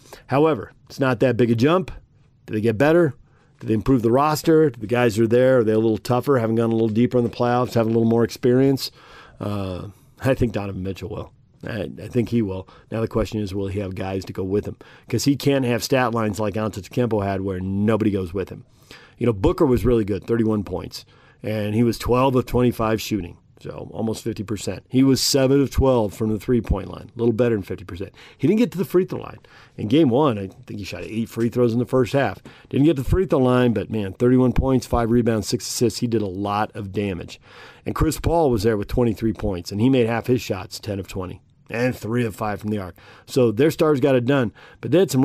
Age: 40-59